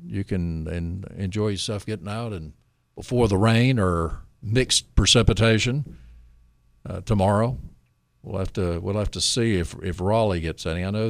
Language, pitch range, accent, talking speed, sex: English, 90-120 Hz, American, 155 wpm, male